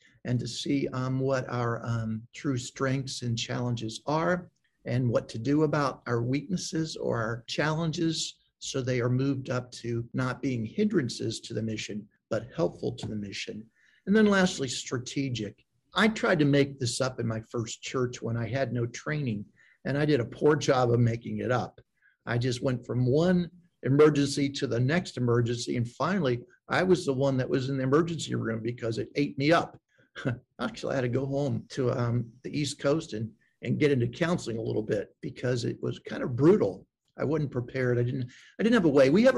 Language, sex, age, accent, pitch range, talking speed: English, male, 50-69, American, 120-155 Hz, 205 wpm